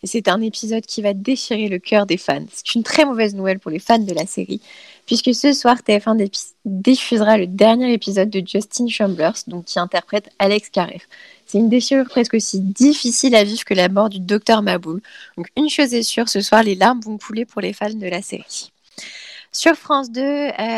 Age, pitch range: 20-39, 190-250 Hz